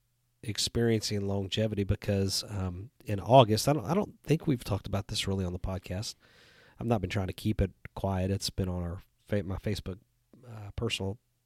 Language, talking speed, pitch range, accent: English, 190 wpm, 95-115 Hz, American